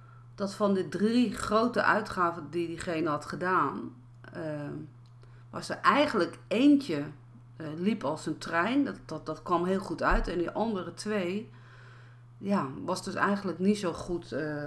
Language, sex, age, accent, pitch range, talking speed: Dutch, female, 40-59, Dutch, 155-215 Hz, 160 wpm